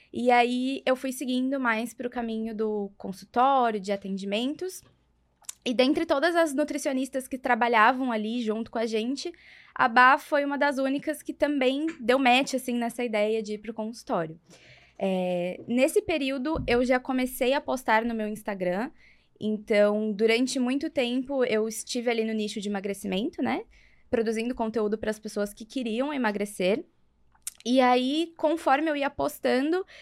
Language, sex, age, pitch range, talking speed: Portuguese, female, 20-39, 215-285 Hz, 160 wpm